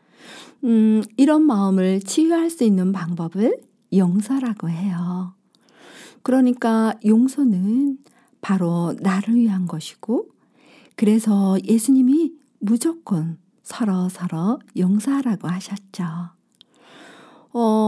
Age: 50-69